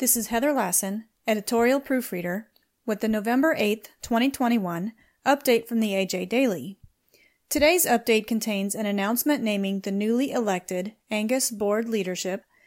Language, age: English, 30-49